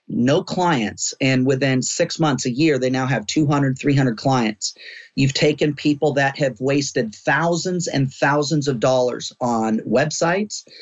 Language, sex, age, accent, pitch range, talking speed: English, male, 40-59, American, 125-150 Hz, 150 wpm